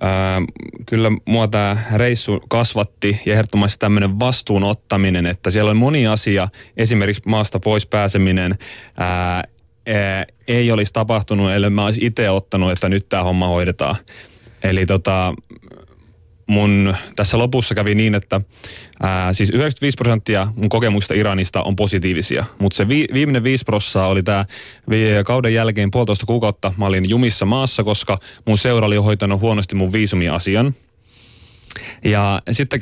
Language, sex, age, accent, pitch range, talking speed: Finnish, male, 30-49, native, 100-115 Hz, 140 wpm